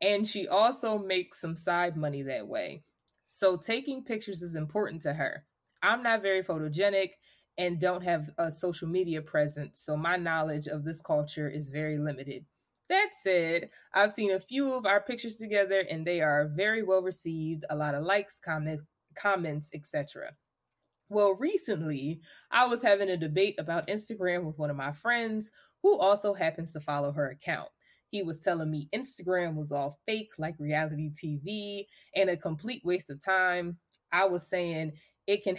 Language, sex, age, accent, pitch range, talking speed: English, female, 20-39, American, 160-205 Hz, 170 wpm